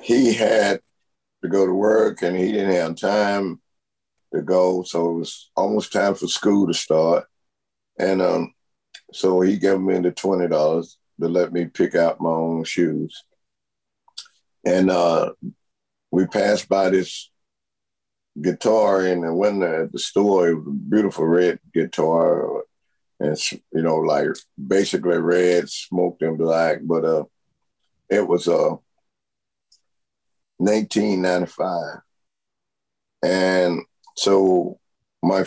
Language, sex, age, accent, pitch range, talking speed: English, male, 50-69, American, 85-95 Hz, 130 wpm